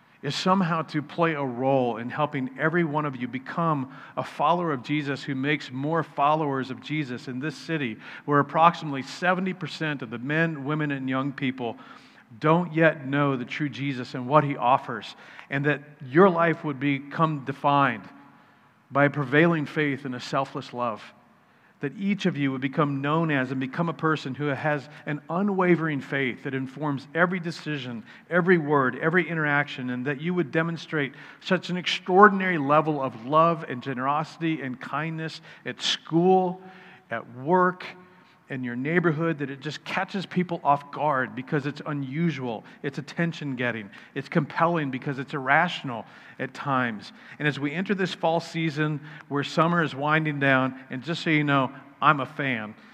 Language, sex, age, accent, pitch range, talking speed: English, male, 50-69, American, 135-165 Hz, 170 wpm